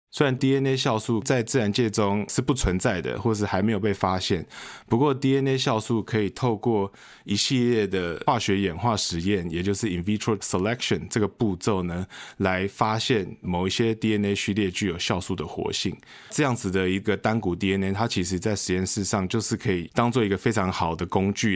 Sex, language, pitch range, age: male, Chinese, 90-115 Hz, 20-39